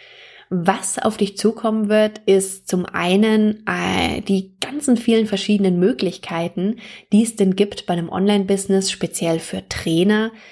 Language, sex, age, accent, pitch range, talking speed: German, female, 20-39, German, 185-215 Hz, 135 wpm